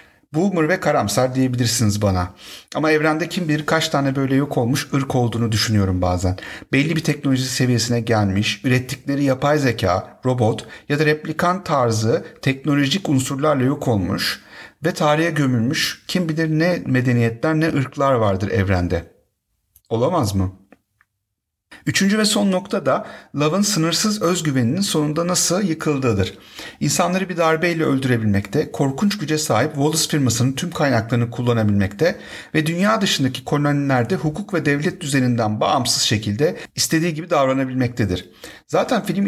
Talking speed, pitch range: 130 wpm, 115-160 Hz